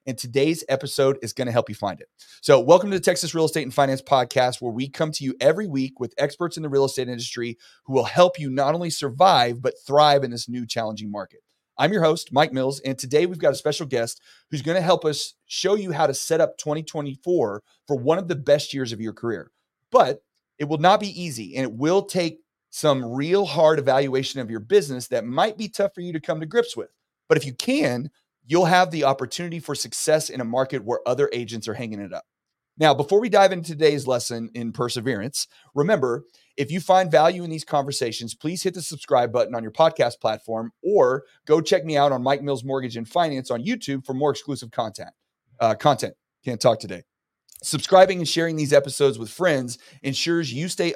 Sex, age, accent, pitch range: male, 30-49, American, 125-165 Hz